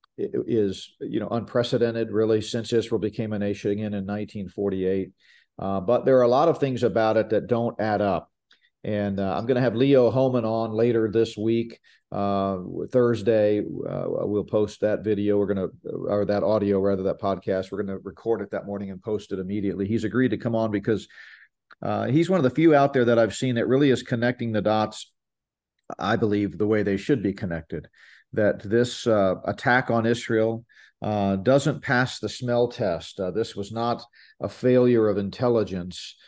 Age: 40-59